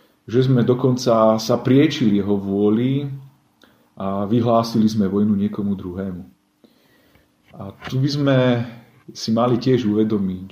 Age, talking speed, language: 40-59, 120 wpm, Slovak